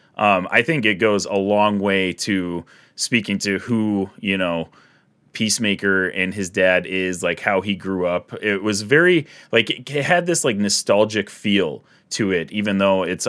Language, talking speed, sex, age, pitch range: English, 175 wpm, male, 30-49, 95-130 Hz